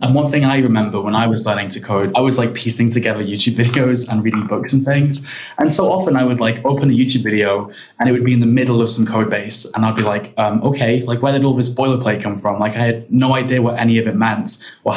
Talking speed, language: 275 wpm, English